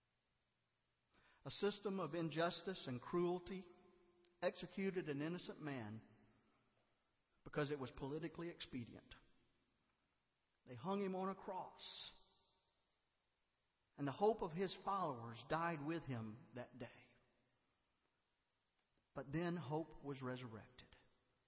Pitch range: 125-180 Hz